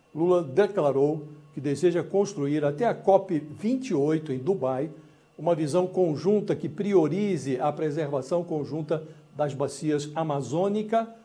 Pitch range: 145-185 Hz